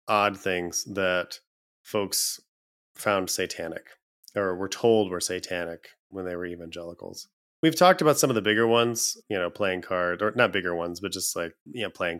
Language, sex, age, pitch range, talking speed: English, male, 30-49, 95-120 Hz, 180 wpm